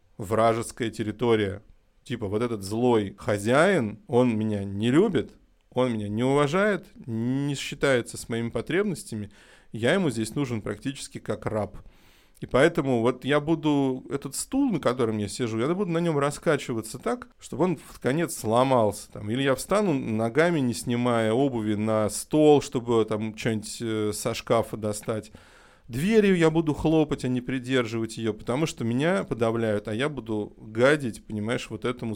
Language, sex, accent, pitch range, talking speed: Russian, male, native, 110-135 Hz, 155 wpm